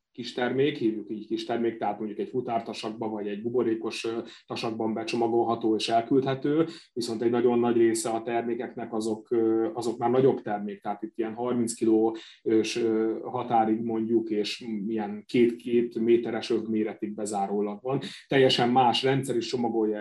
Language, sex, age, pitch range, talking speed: Hungarian, male, 30-49, 110-120 Hz, 145 wpm